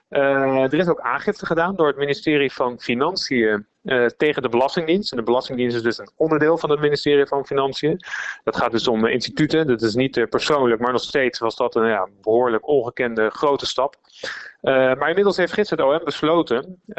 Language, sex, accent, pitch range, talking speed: Dutch, male, Dutch, 125-155 Hz, 200 wpm